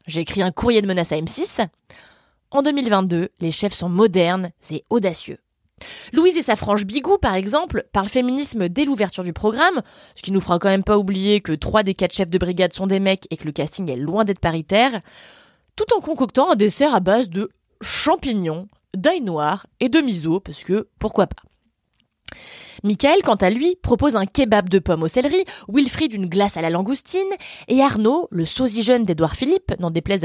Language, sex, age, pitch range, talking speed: French, female, 20-39, 180-260 Hz, 195 wpm